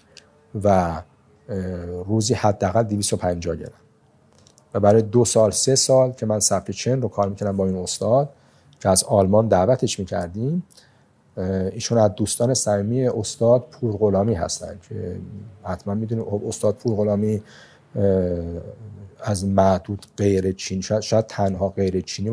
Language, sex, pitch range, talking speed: Persian, male, 95-115 Hz, 125 wpm